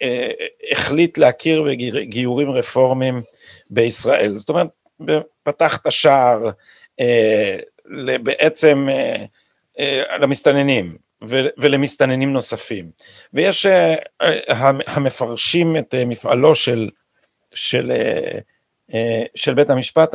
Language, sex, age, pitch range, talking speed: Hebrew, male, 50-69, 120-155 Hz, 90 wpm